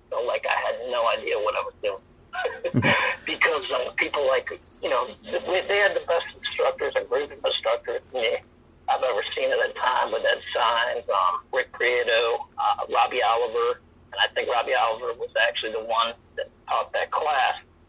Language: English